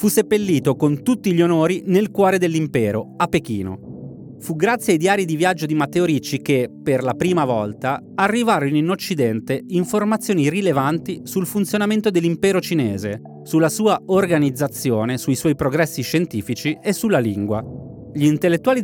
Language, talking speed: Italian, 145 wpm